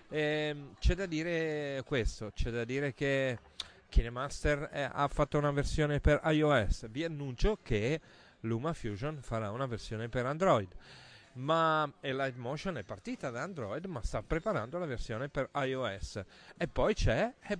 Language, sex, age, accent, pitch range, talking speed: Italian, male, 40-59, native, 115-150 Hz, 150 wpm